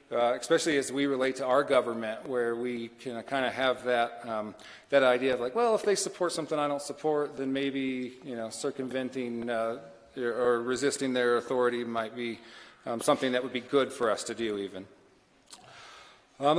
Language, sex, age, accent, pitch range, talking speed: English, male, 40-59, American, 125-165 Hz, 190 wpm